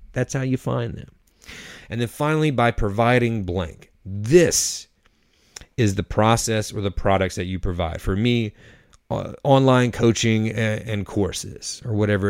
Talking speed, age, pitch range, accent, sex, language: 150 wpm, 30-49, 100-125 Hz, American, male, English